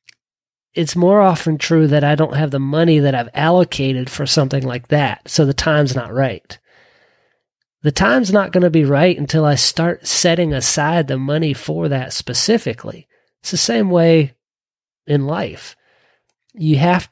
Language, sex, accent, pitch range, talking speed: English, male, American, 140-180 Hz, 165 wpm